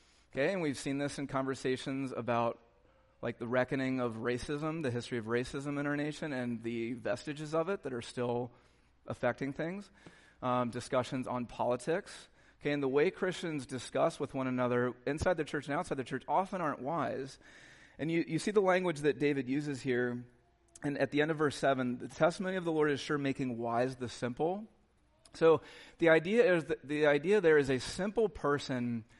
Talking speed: 190 wpm